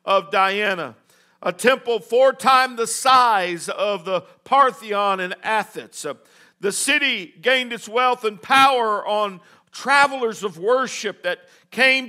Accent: American